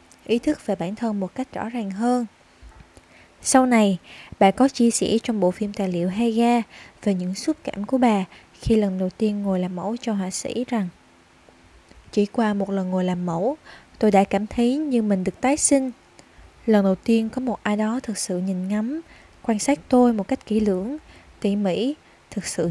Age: 20-39